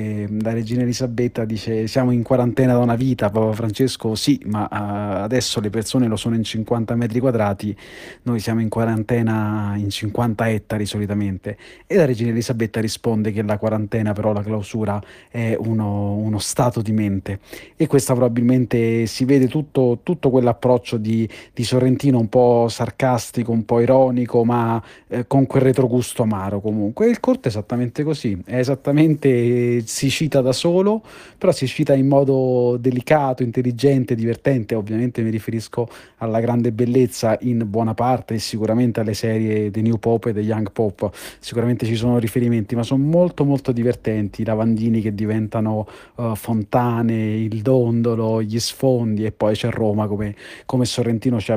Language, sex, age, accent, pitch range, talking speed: Italian, male, 30-49, native, 110-130 Hz, 160 wpm